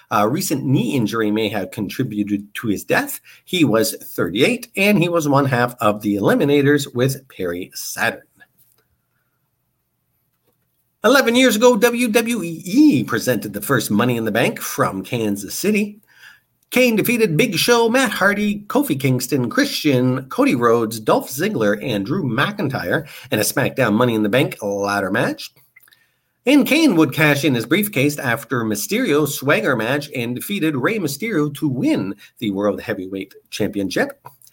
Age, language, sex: 50-69, English, male